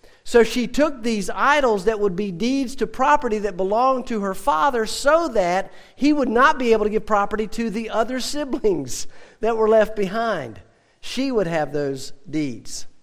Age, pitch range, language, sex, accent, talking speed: 50-69, 185-230 Hz, English, male, American, 180 wpm